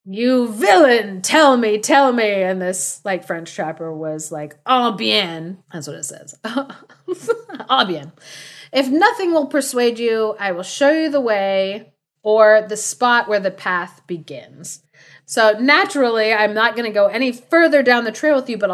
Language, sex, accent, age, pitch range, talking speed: English, female, American, 30-49, 170-235 Hz, 175 wpm